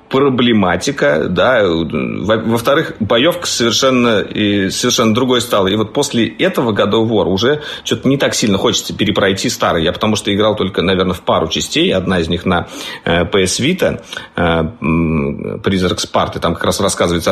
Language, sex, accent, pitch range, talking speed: Russian, male, native, 100-130 Hz, 155 wpm